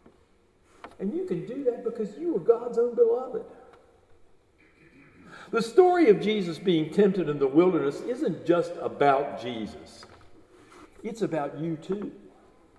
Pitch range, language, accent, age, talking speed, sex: 150-240 Hz, English, American, 60-79, 130 wpm, male